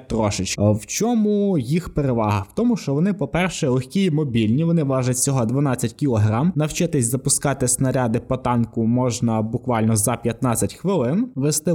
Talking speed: 150 wpm